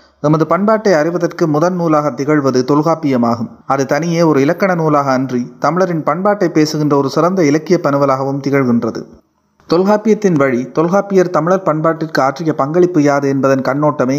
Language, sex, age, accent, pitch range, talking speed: Tamil, male, 30-49, native, 135-170 Hz, 125 wpm